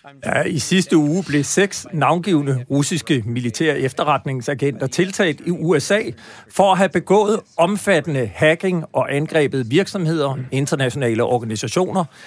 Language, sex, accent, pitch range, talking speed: Danish, male, native, 130-175 Hz, 115 wpm